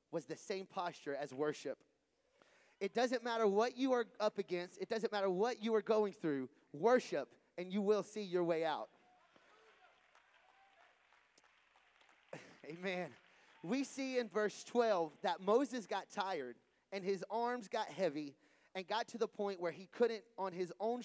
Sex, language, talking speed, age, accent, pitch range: male, English, 160 wpm, 30-49, American, 165-220 Hz